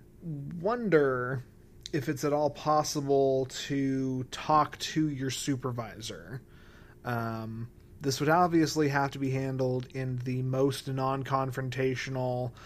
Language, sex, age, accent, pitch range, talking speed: English, male, 30-49, American, 125-145 Hz, 110 wpm